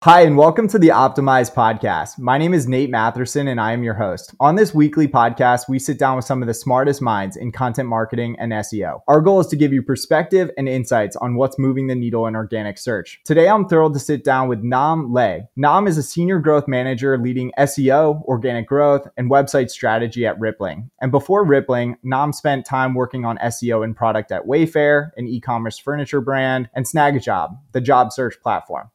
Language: English